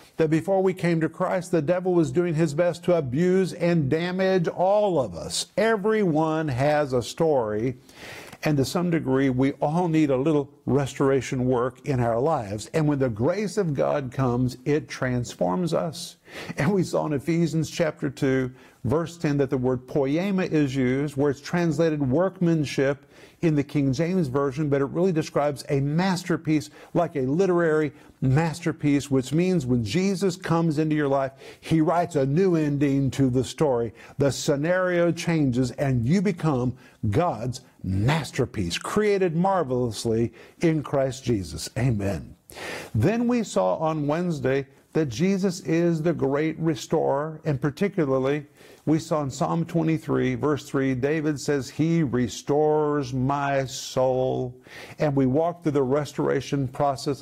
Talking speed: 150 wpm